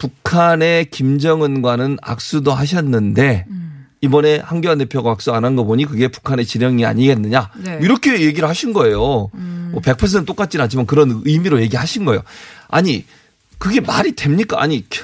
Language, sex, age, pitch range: Korean, male, 30-49, 125-170 Hz